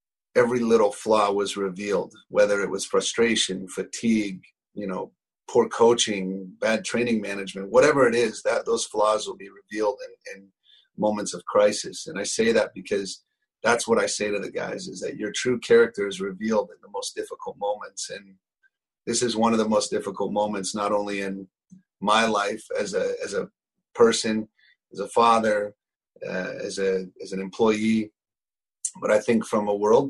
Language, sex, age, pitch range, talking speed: English, male, 40-59, 100-120 Hz, 175 wpm